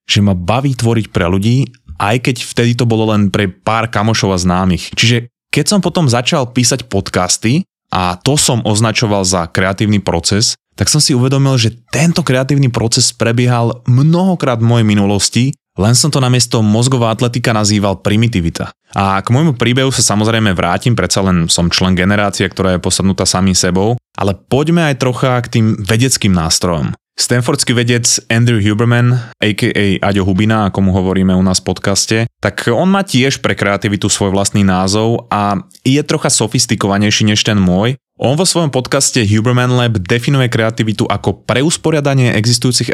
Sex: male